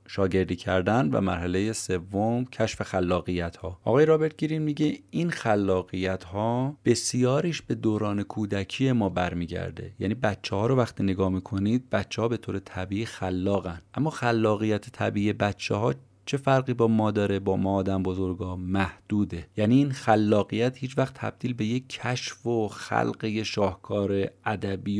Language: Persian